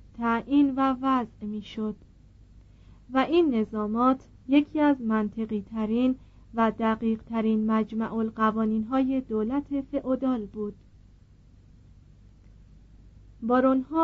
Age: 40-59